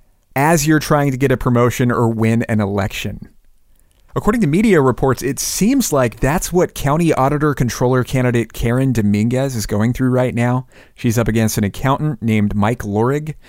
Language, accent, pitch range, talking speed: English, American, 110-140 Hz, 175 wpm